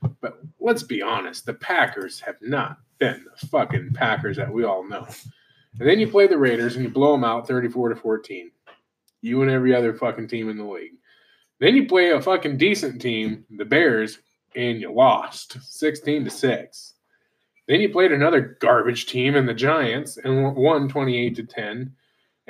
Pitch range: 125-195 Hz